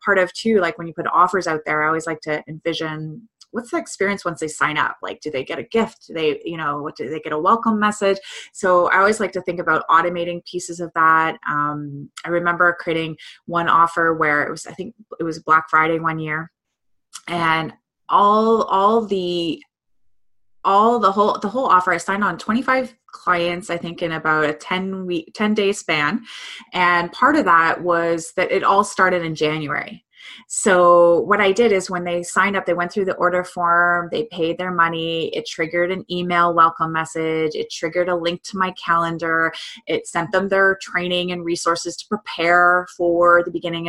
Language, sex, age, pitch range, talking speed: English, female, 20-39, 165-190 Hz, 200 wpm